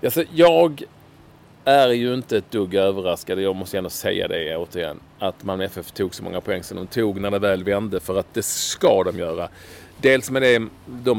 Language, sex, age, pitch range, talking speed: English, male, 40-59, 100-160 Hz, 205 wpm